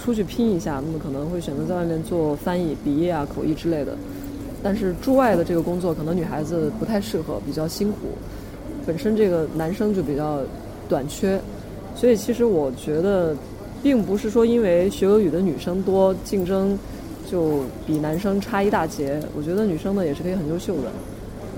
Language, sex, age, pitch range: Chinese, female, 20-39, 155-205 Hz